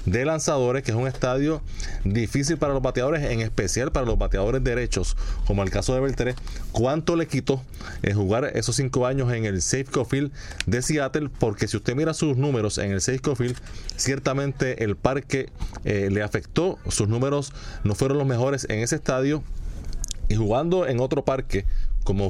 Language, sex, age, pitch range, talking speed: Spanish, male, 30-49, 100-135 Hz, 180 wpm